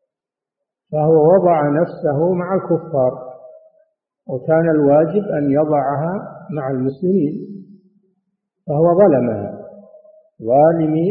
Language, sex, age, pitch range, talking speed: Arabic, male, 50-69, 145-195 Hz, 75 wpm